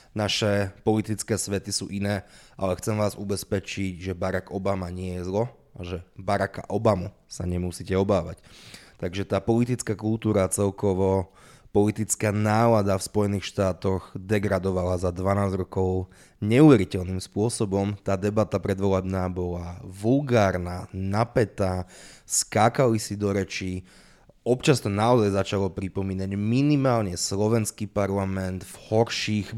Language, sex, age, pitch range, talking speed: Slovak, male, 20-39, 95-110 Hz, 120 wpm